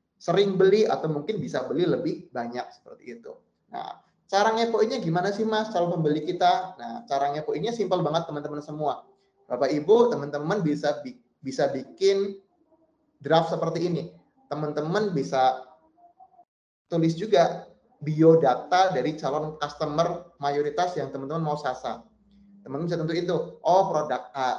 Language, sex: Indonesian, male